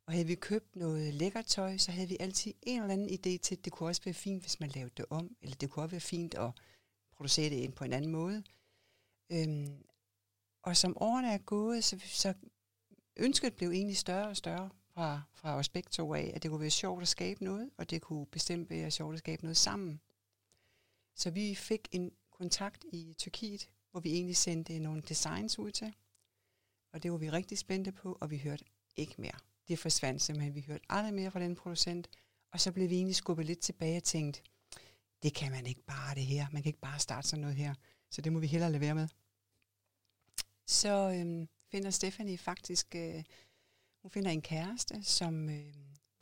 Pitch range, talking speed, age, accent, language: 140-185 Hz, 205 wpm, 60-79, native, Danish